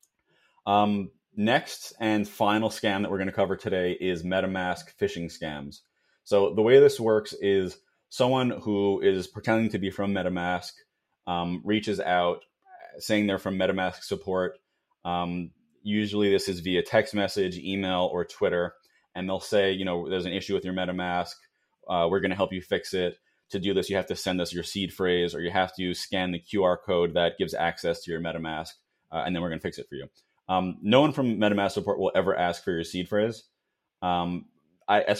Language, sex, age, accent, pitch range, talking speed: English, male, 30-49, American, 90-100 Hz, 200 wpm